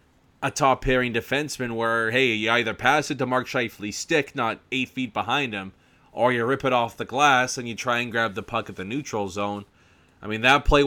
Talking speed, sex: 220 wpm, male